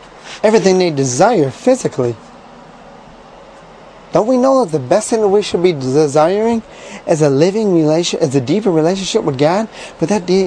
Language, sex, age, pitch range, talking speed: English, male, 30-49, 140-200 Hz, 165 wpm